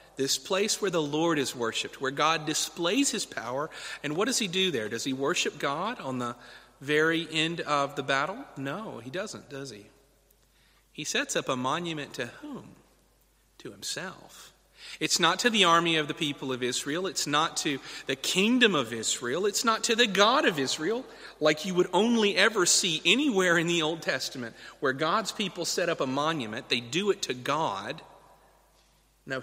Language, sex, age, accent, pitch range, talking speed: English, male, 40-59, American, 125-180 Hz, 185 wpm